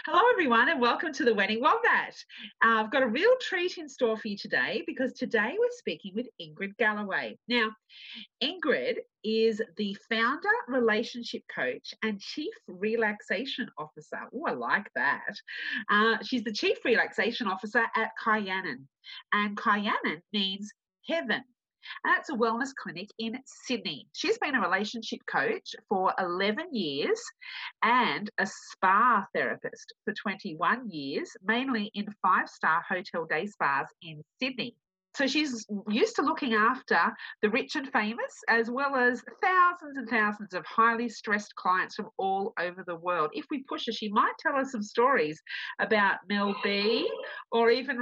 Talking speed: 155 wpm